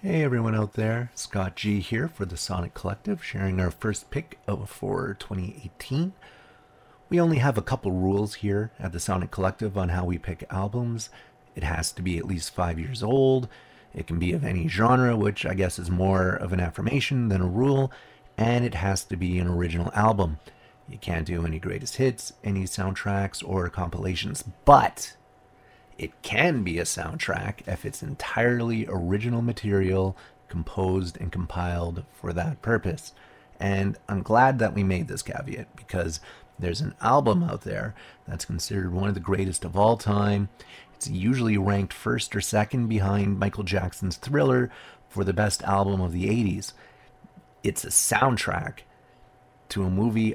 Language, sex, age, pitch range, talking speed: English, male, 30-49, 90-115 Hz, 170 wpm